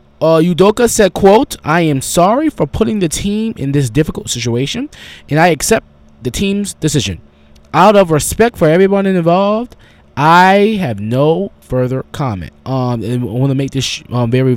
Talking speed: 170 wpm